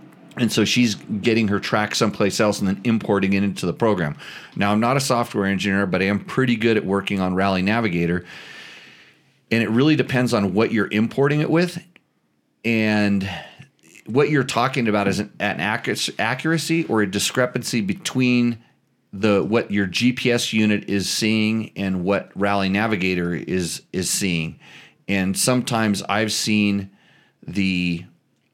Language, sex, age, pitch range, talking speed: English, male, 40-59, 100-125 Hz, 155 wpm